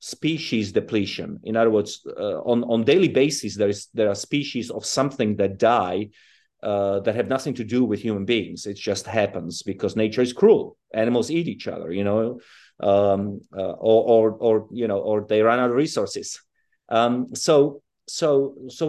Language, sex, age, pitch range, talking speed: Hebrew, male, 30-49, 105-130 Hz, 185 wpm